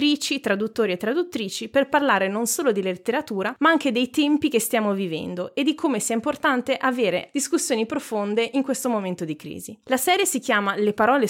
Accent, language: native, Italian